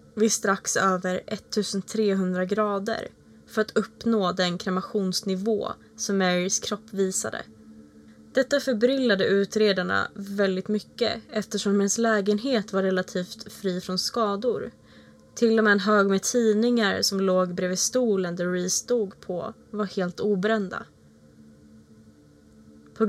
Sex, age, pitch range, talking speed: female, 20-39, 180-215 Hz, 120 wpm